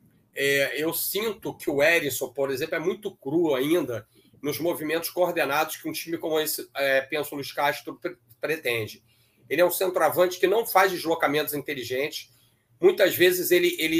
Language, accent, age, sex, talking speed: Portuguese, Brazilian, 40-59, male, 170 wpm